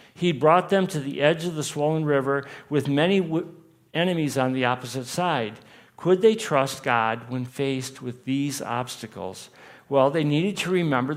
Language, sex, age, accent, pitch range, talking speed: English, male, 50-69, American, 125-160 Hz, 165 wpm